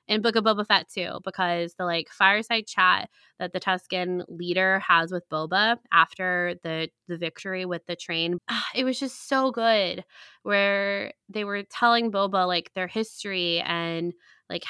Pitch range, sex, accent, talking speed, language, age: 175-205 Hz, female, American, 165 wpm, English, 20-39